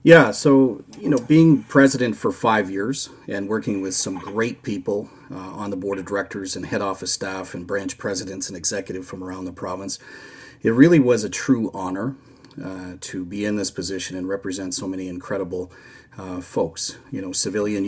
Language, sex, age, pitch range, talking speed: English, male, 40-59, 95-130 Hz, 190 wpm